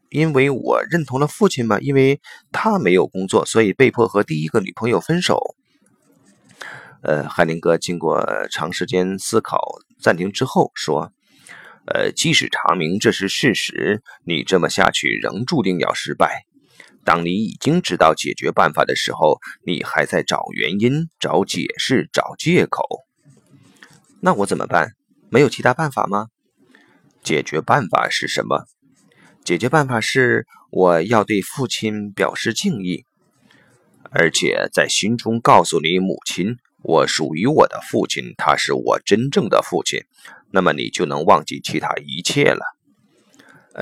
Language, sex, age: Chinese, male, 30-49